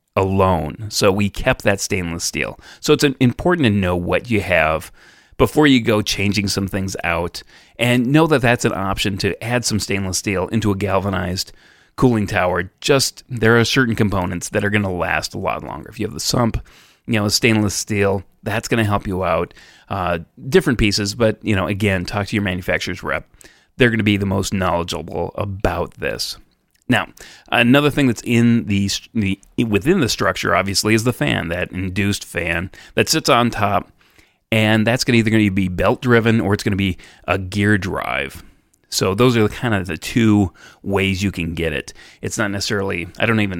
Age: 30-49